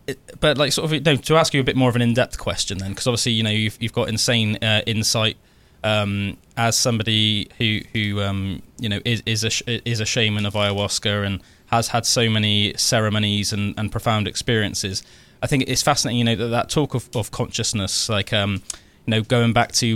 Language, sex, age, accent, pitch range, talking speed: English, male, 20-39, British, 105-125 Hz, 225 wpm